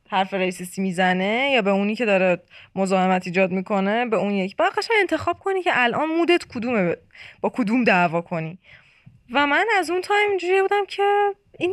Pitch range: 190-285 Hz